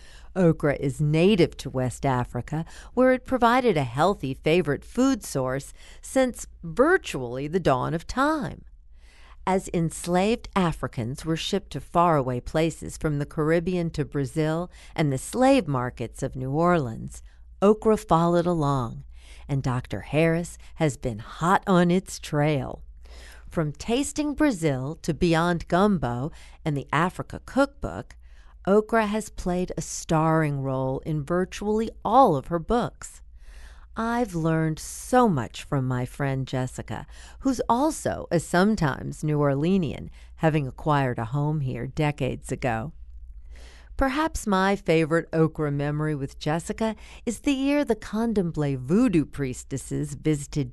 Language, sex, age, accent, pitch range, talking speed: English, female, 50-69, American, 130-185 Hz, 130 wpm